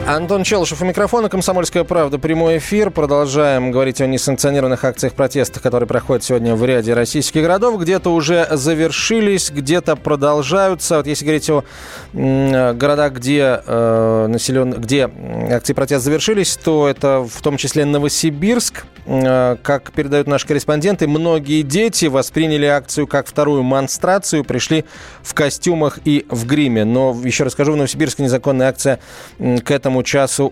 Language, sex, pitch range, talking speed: Russian, male, 125-155 Hz, 140 wpm